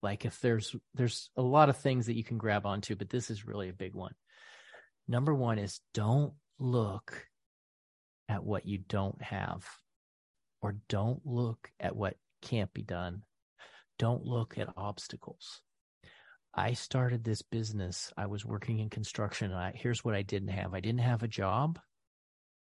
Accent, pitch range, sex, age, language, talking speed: American, 100-120 Hz, male, 40-59, English, 165 wpm